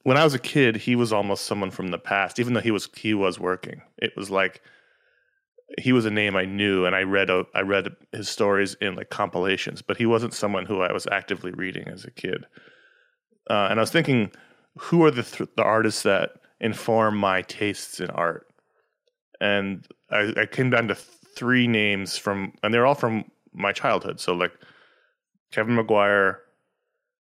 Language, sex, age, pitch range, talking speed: English, male, 20-39, 100-125 Hz, 190 wpm